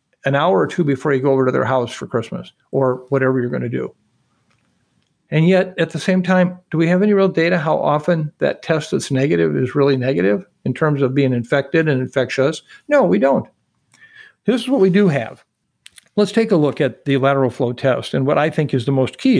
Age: 50-69